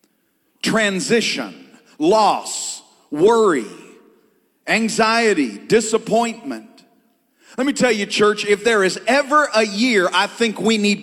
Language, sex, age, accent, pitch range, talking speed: English, male, 40-59, American, 180-235 Hz, 110 wpm